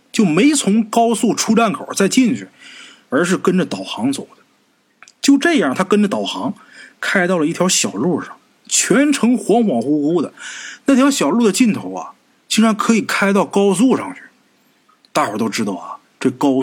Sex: male